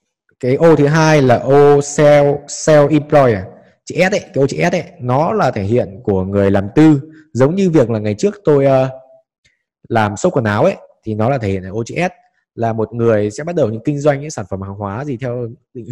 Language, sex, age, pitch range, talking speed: Vietnamese, male, 20-39, 105-145 Hz, 235 wpm